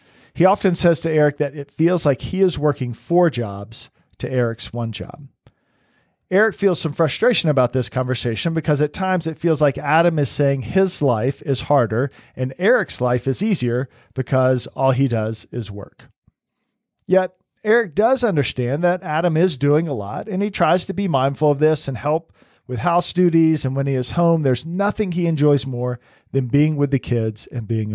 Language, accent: English, American